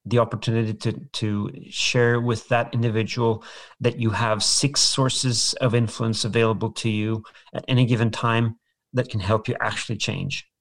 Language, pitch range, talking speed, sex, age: English, 115-140 Hz, 160 wpm, male, 40-59